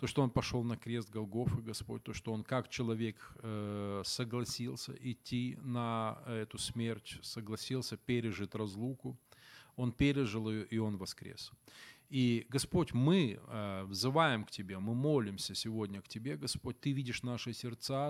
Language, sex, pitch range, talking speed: Ukrainian, male, 110-130 Hz, 140 wpm